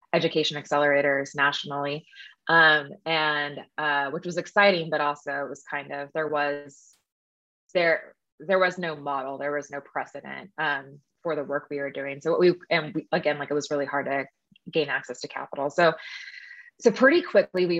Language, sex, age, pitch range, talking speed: English, female, 20-39, 140-165 Hz, 180 wpm